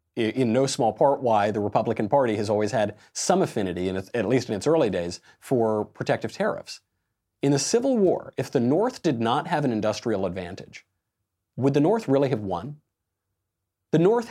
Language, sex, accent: English, male, American